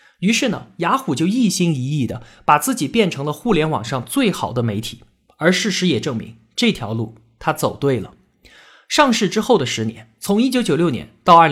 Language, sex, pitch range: Chinese, male, 125-215 Hz